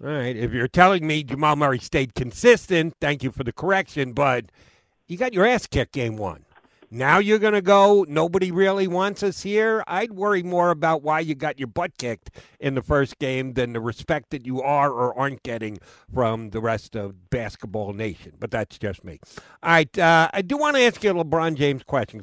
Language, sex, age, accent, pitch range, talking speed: English, male, 50-69, American, 120-165 Hz, 215 wpm